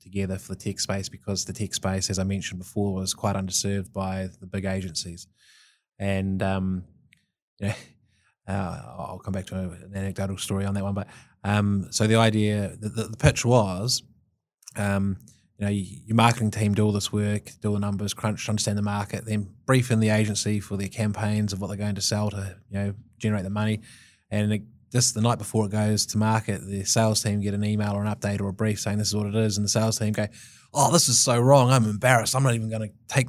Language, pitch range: English, 100-115 Hz